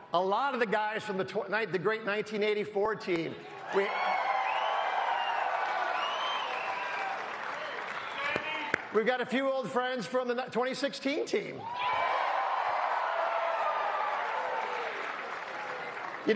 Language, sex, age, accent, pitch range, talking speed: English, male, 50-69, American, 170-225 Hz, 80 wpm